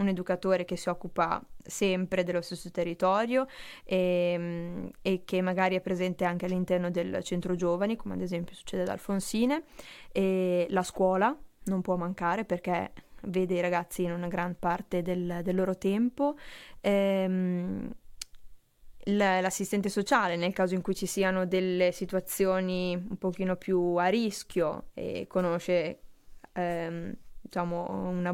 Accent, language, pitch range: native, Italian, 180-205 Hz